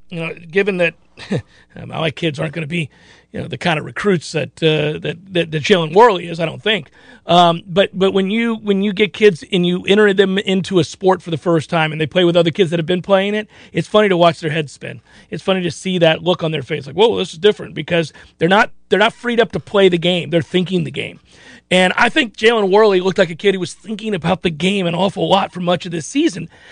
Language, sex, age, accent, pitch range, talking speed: English, male, 40-59, American, 165-210 Hz, 265 wpm